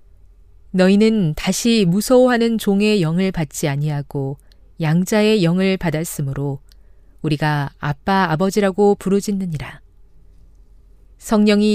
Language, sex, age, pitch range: Korean, female, 40-59, 130-205 Hz